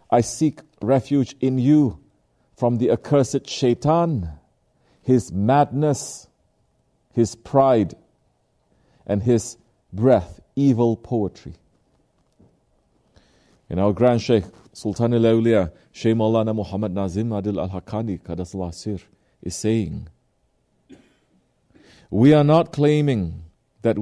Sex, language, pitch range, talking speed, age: male, English, 105-135 Hz, 95 wpm, 40-59